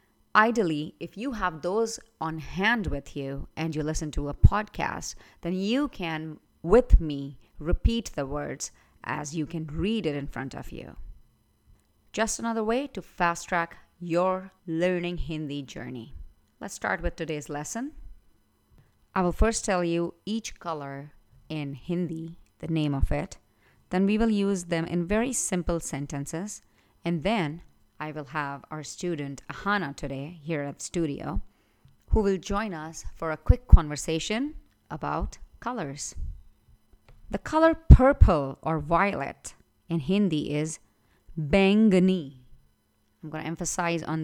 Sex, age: female, 30-49